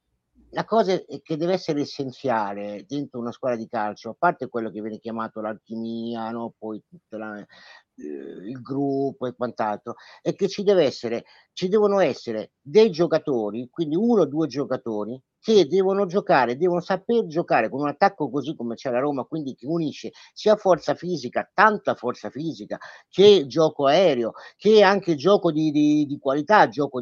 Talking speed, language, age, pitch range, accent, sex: 165 wpm, Italian, 50-69, 130-195 Hz, native, male